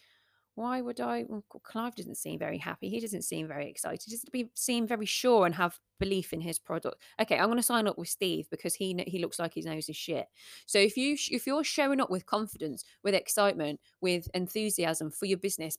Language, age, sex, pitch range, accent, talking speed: English, 20-39, female, 170-230 Hz, British, 225 wpm